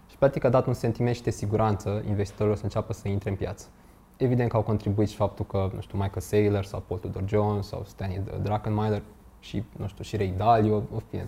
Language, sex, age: Romanian, male, 20-39